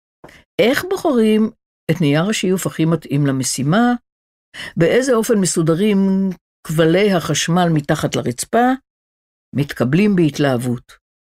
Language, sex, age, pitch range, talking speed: Hebrew, female, 60-79, 140-215 Hz, 90 wpm